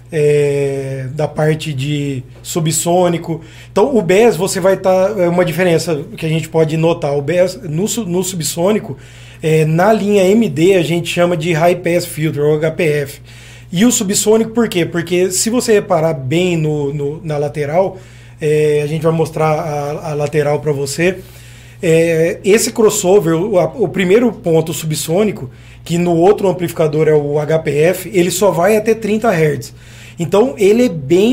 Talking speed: 155 wpm